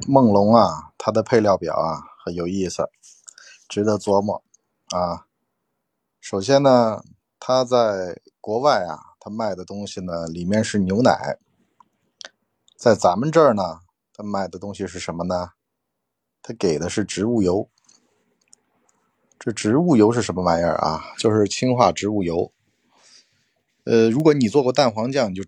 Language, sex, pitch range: Chinese, male, 95-115 Hz